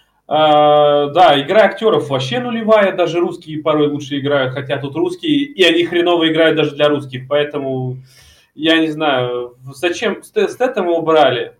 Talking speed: 155 wpm